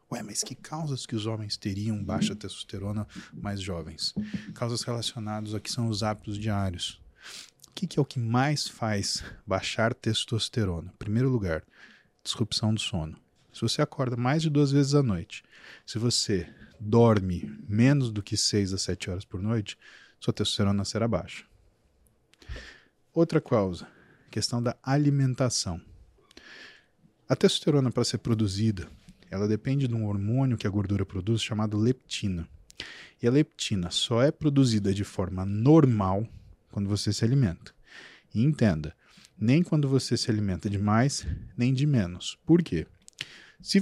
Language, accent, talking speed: Portuguese, Brazilian, 145 wpm